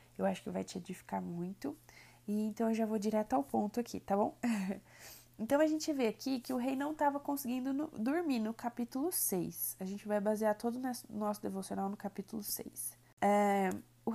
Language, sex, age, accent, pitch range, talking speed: Portuguese, female, 20-39, Brazilian, 205-260 Hz, 200 wpm